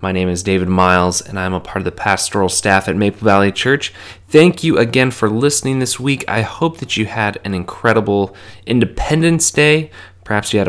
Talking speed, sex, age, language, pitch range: 200 wpm, male, 30-49, English, 95-110 Hz